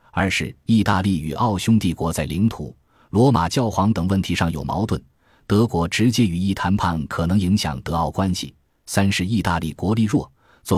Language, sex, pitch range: Chinese, male, 85-115 Hz